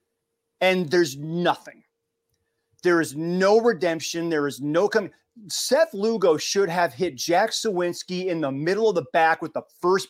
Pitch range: 155-210 Hz